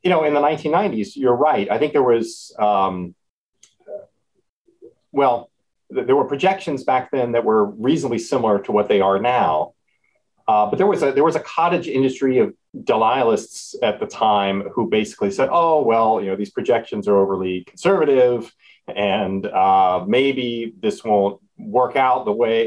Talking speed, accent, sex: 160 wpm, American, male